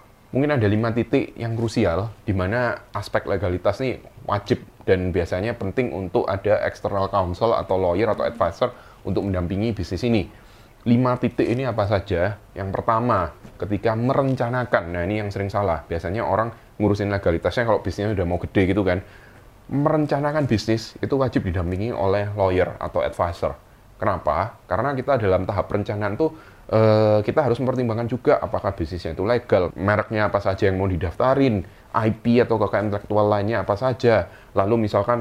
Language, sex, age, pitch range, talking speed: Indonesian, male, 20-39, 100-120 Hz, 155 wpm